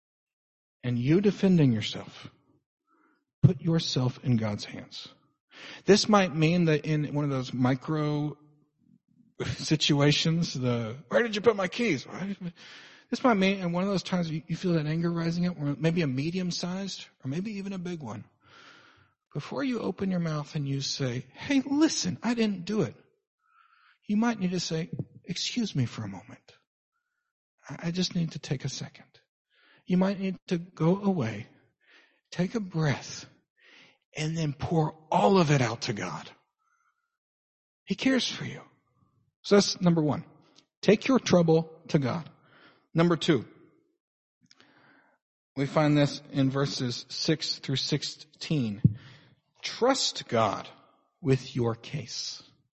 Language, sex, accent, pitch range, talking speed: English, male, American, 140-195 Hz, 145 wpm